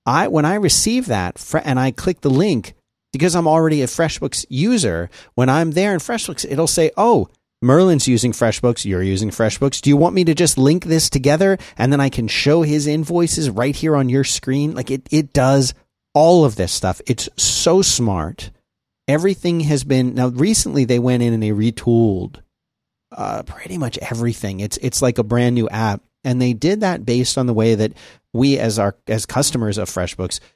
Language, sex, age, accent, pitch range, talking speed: English, male, 40-59, American, 110-140 Hz, 195 wpm